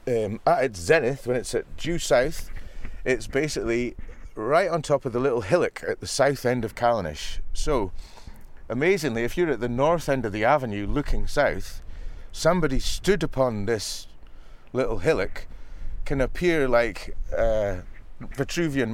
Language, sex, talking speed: English, male, 150 wpm